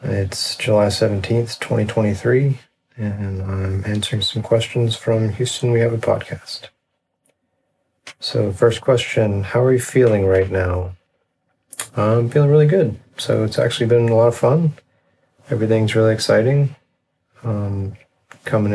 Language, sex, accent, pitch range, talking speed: English, male, American, 100-115 Hz, 130 wpm